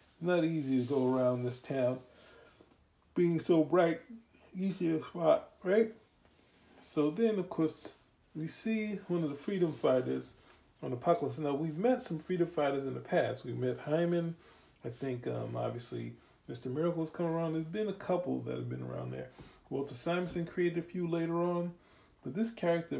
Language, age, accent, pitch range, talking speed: English, 20-39, American, 130-170 Hz, 175 wpm